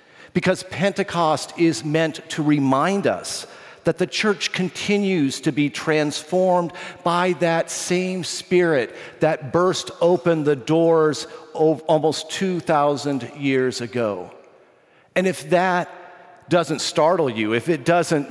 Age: 50-69